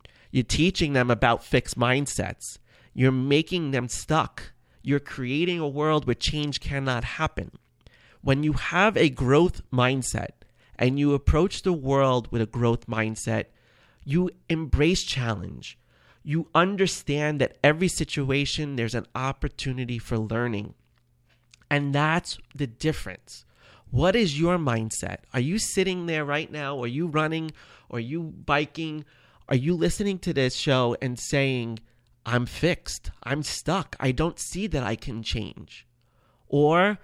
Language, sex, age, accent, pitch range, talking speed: English, male, 30-49, American, 120-165 Hz, 140 wpm